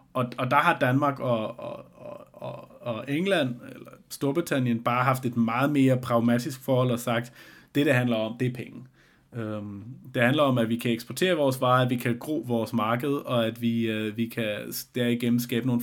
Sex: male